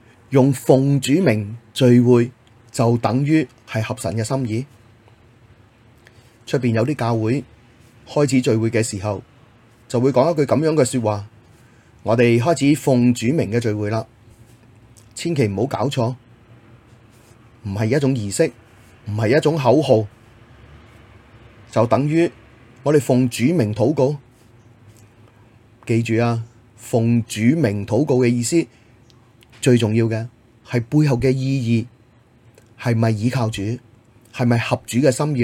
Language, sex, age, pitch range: Chinese, male, 30-49, 115-125 Hz